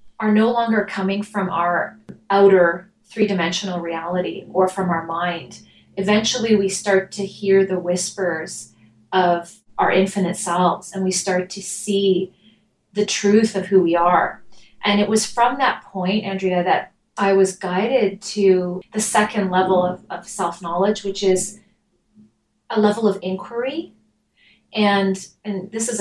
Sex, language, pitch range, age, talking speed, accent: female, English, 185-210 Hz, 30-49, 145 wpm, American